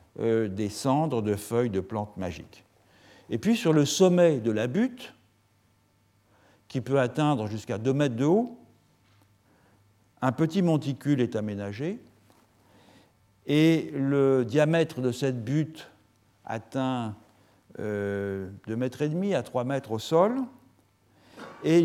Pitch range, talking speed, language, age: 105-150 Hz, 120 wpm, French, 60-79